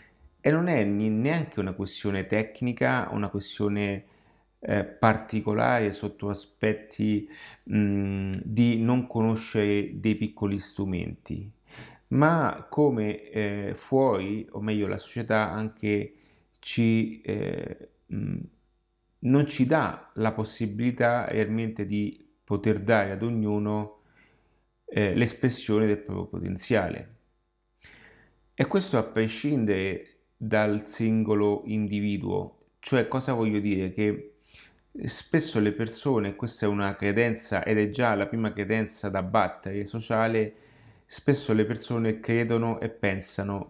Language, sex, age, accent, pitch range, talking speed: Italian, male, 30-49, native, 100-115 Hz, 115 wpm